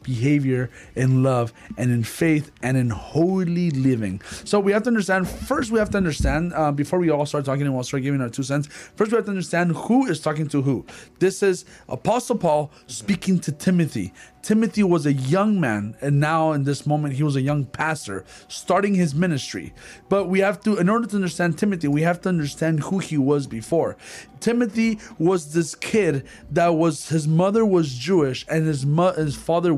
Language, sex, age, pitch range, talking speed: English, male, 30-49, 140-190 Hz, 200 wpm